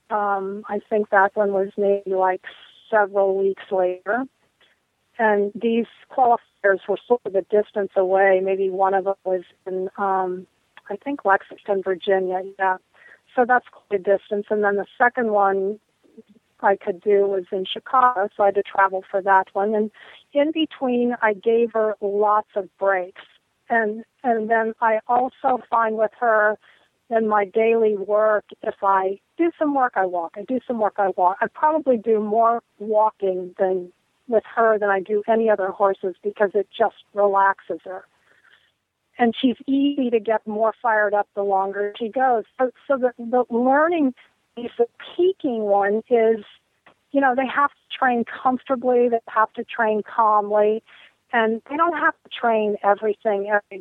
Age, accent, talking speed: 40-59, American, 170 wpm